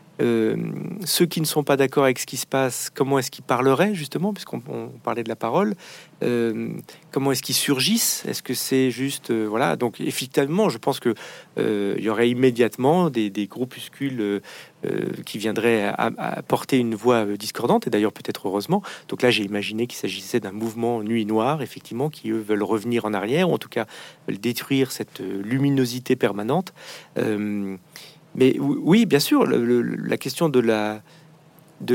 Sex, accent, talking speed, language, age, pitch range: male, French, 175 wpm, French, 40-59, 120-160 Hz